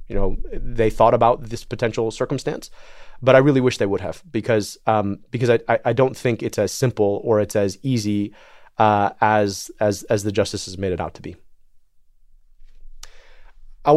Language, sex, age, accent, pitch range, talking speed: English, male, 30-49, American, 105-120 Hz, 180 wpm